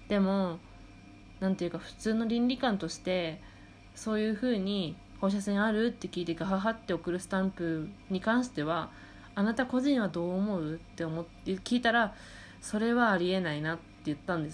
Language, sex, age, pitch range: Japanese, female, 20-39, 160-200 Hz